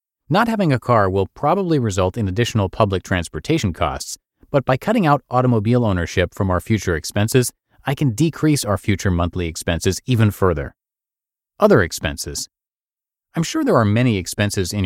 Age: 30-49